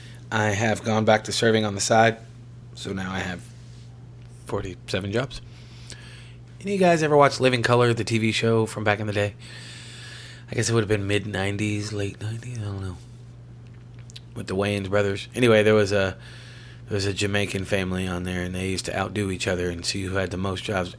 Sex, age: male, 30-49